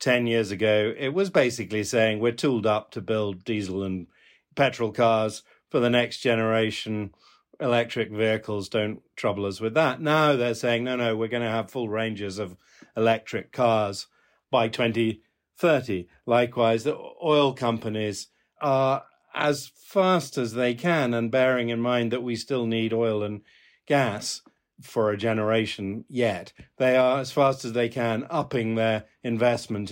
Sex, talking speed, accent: male, 155 wpm, British